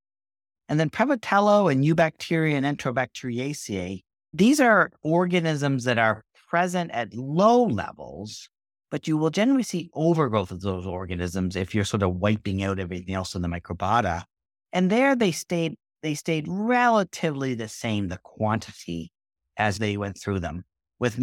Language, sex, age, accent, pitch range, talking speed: English, male, 50-69, American, 100-155 Hz, 145 wpm